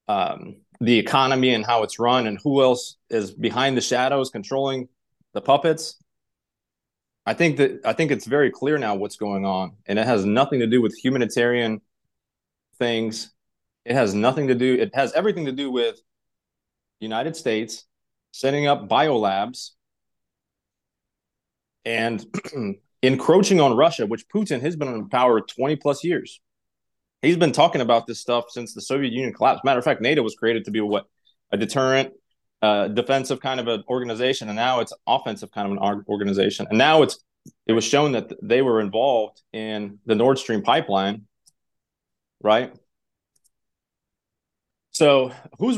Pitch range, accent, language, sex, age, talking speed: 110-135 Hz, American, English, male, 30-49, 160 wpm